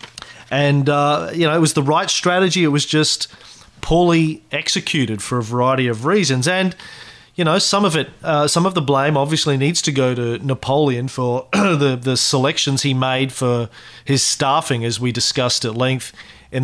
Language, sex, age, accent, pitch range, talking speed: English, male, 30-49, Australian, 125-165 Hz, 185 wpm